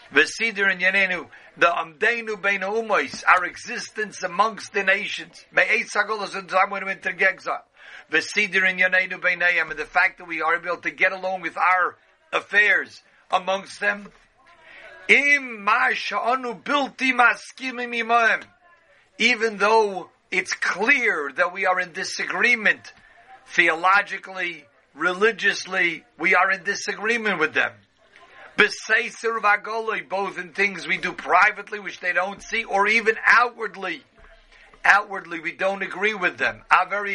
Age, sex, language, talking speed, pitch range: 50-69, male, English, 115 wpm, 175-215 Hz